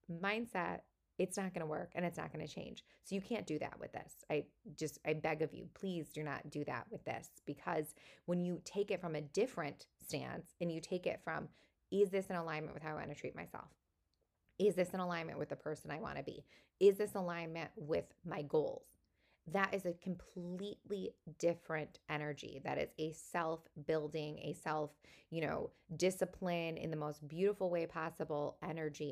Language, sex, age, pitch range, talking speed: English, female, 20-39, 155-195 Hz, 200 wpm